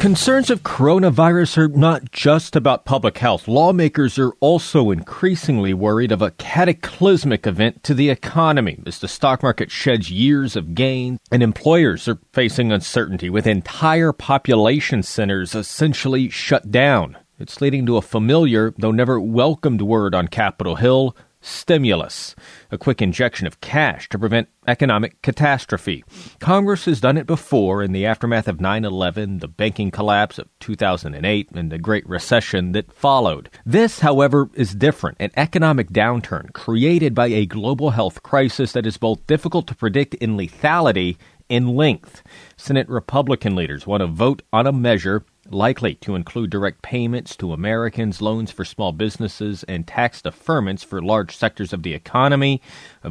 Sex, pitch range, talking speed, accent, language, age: male, 105-140 Hz, 155 wpm, American, English, 40-59